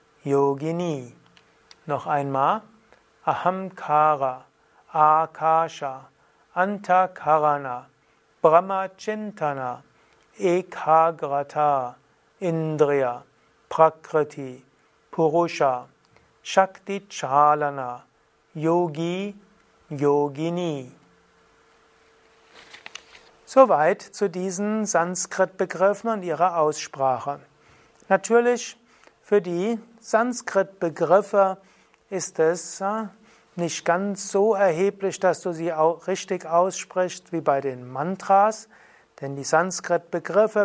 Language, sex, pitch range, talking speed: German, male, 150-195 Hz, 70 wpm